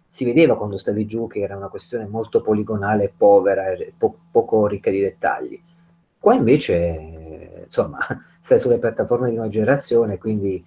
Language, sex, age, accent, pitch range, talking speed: Italian, male, 30-49, native, 100-155 Hz, 150 wpm